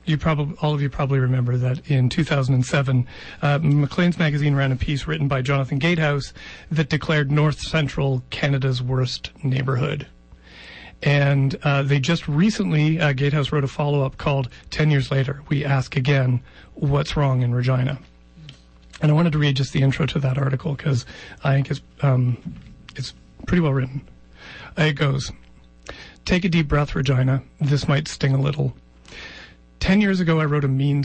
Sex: male